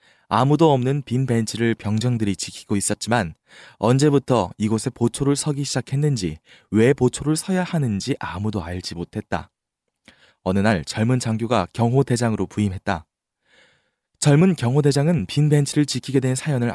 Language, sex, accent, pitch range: Korean, male, native, 105-140 Hz